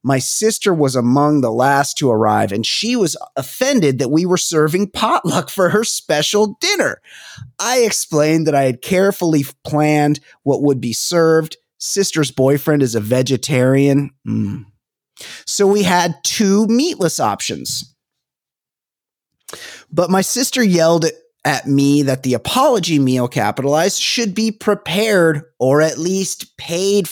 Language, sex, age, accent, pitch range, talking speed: English, male, 30-49, American, 135-195 Hz, 135 wpm